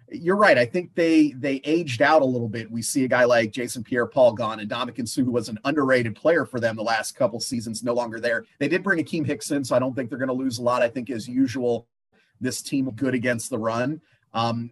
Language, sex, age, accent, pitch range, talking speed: English, male, 30-49, American, 115-150 Hz, 255 wpm